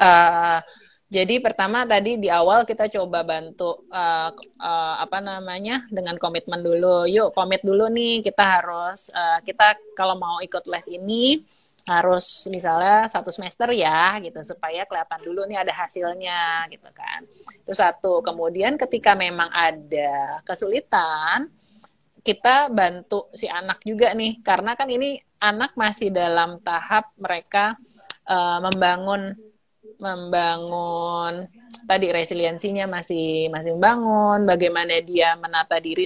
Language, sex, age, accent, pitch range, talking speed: Indonesian, female, 20-39, native, 170-215 Hz, 130 wpm